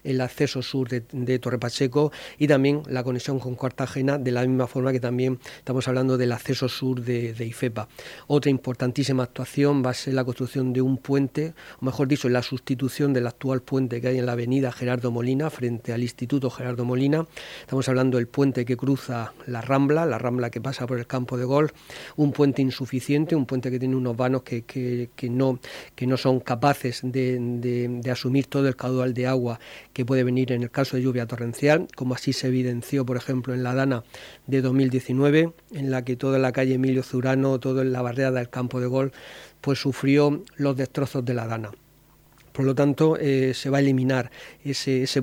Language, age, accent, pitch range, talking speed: Spanish, 40-59, Spanish, 125-135 Hz, 205 wpm